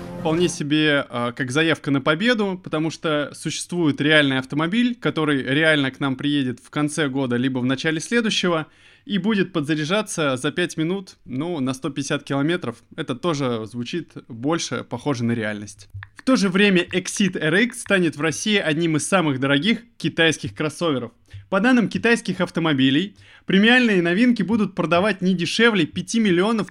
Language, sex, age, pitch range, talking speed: Russian, male, 20-39, 150-190 Hz, 155 wpm